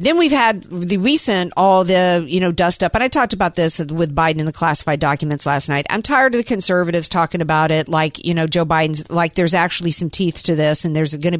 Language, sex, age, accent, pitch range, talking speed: English, female, 50-69, American, 155-195 Hz, 255 wpm